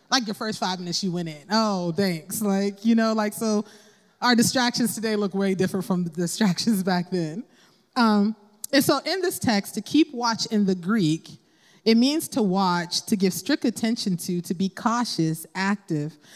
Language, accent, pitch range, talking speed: English, American, 180-230 Hz, 185 wpm